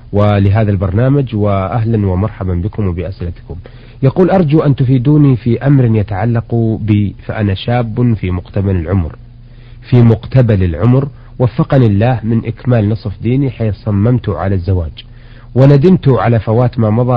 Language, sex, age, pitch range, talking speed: Arabic, male, 40-59, 105-130 Hz, 130 wpm